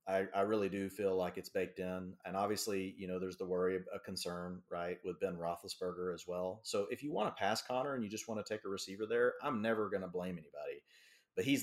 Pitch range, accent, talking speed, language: 90-110 Hz, American, 250 wpm, English